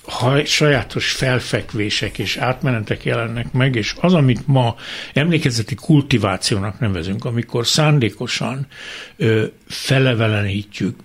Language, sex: Hungarian, male